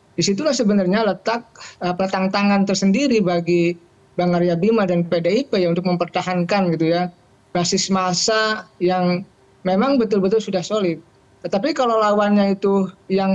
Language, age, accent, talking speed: Indonesian, 20-39, native, 135 wpm